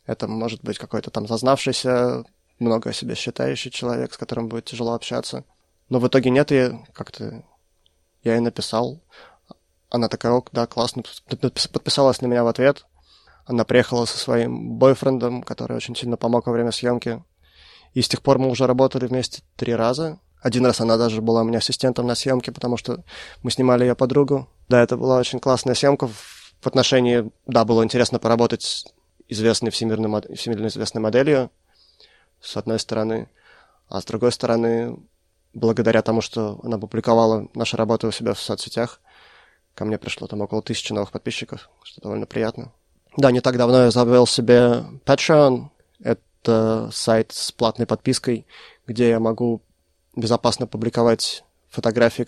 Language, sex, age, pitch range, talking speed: Russian, male, 20-39, 110-125 Hz, 160 wpm